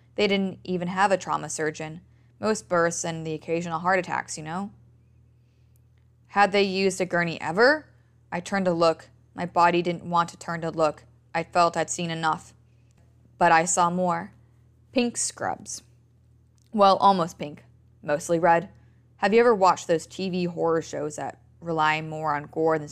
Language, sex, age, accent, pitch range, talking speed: English, female, 20-39, American, 150-185 Hz, 170 wpm